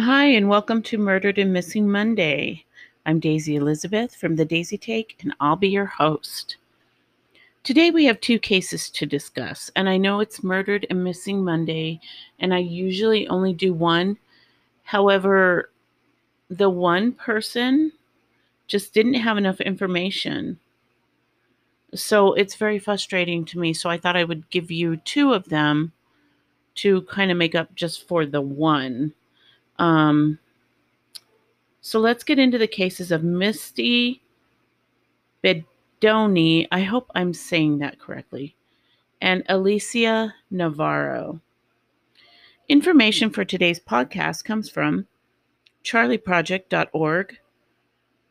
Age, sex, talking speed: 40-59, female, 125 wpm